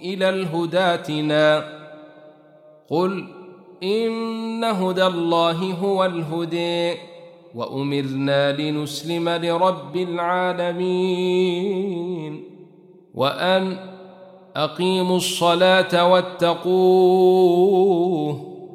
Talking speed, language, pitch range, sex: 50 wpm, Arabic, 150-185 Hz, male